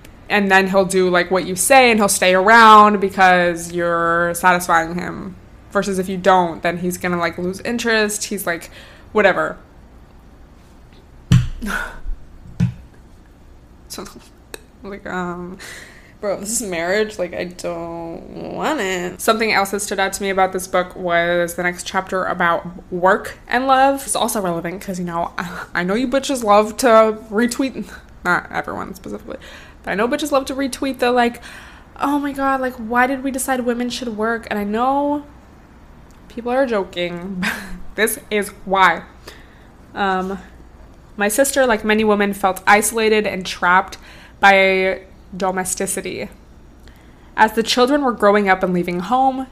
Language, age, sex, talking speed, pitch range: English, 20-39, female, 155 wpm, 175-220 Hz